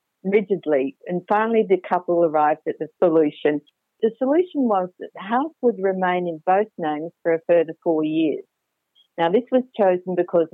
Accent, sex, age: Australian, female, 50-69